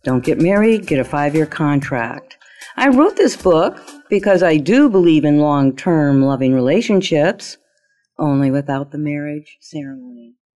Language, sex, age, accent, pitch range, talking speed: English, female, 50-69, American, 150-245 Hz, 135 wpm